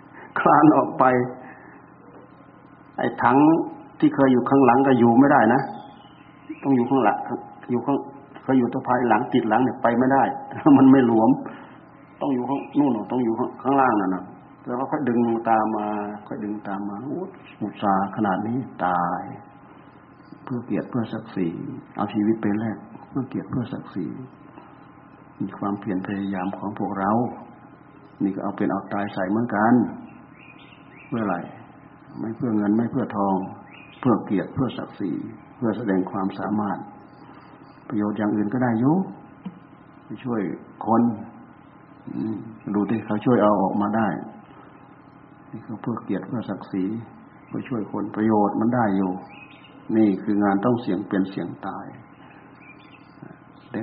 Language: Thai